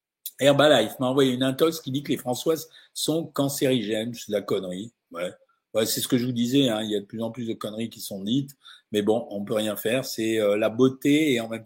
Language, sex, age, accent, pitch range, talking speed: French, male, 50-69, French, 125-150 Hz, 255 wpm